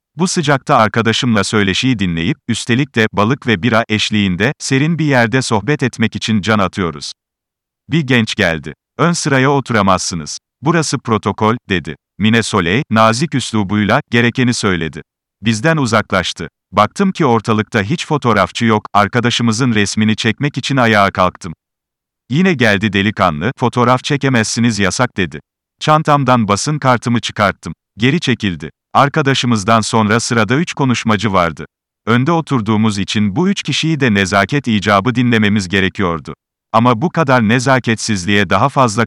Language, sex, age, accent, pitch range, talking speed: Turkish, male, 40-59, native, 100-130 Hz, 125 wpm